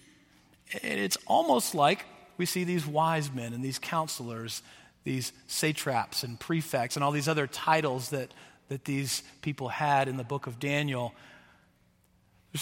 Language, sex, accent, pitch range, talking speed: English, male, American, 140-185 Hz, 145 wpm